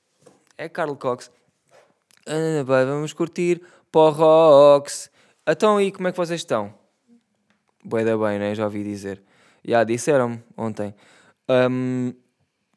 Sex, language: male, Portuguese